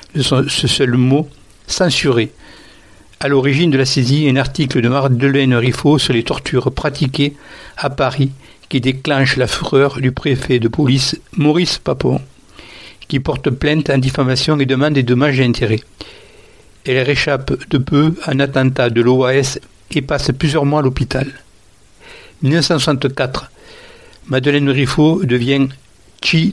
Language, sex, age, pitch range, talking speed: English, male, 60-79, 130-150 Hz, 135 wpm